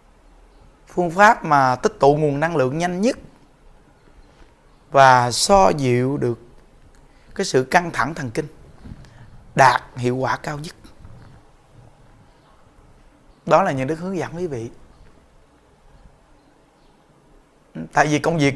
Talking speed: 120 wpm